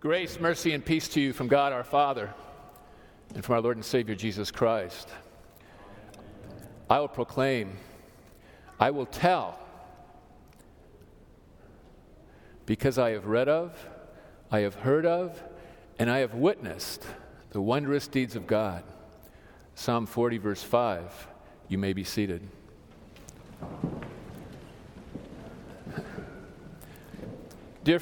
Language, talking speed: English, 110 wpm